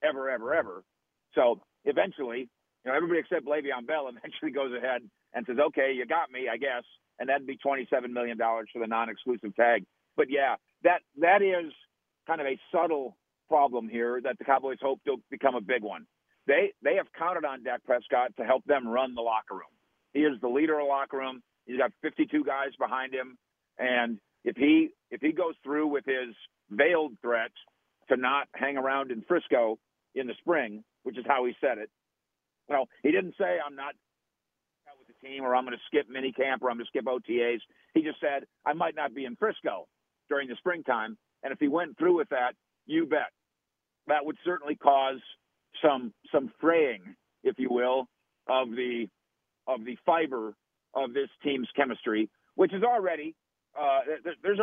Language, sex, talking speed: English, male, 190 wpm